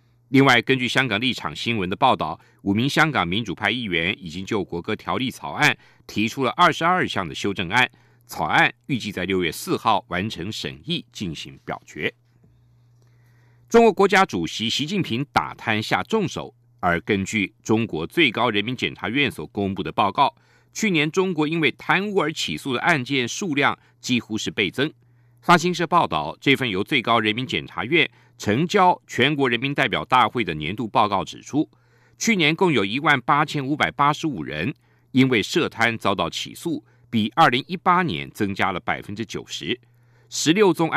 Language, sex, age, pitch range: German, male, 50-69, 105-150 Hz